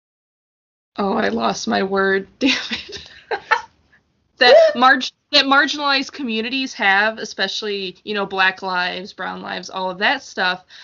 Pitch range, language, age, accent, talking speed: 190-230 Hz, English, 20-39, American, 135 wpm